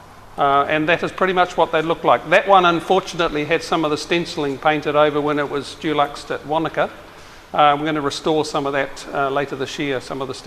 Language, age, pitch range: English, 50-69, 150-175 Hz